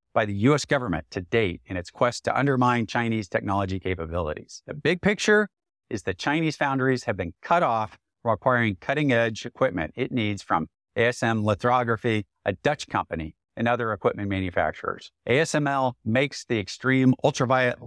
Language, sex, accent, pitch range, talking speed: English, male, American, 105-140 Hz, 160 wpm